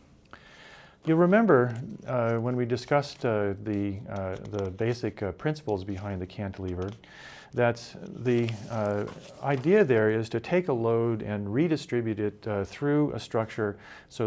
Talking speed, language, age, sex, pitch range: 145 wpm, English, 40-59, male, 100-125 Hz